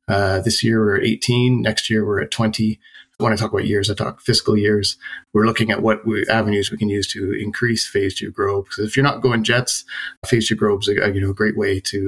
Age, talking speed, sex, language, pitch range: 30-49, 260 wpm, male, English, 105-120 Hz